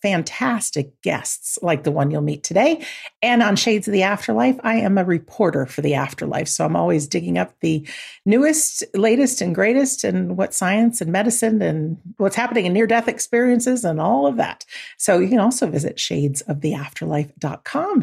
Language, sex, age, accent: English, female, 50-69, American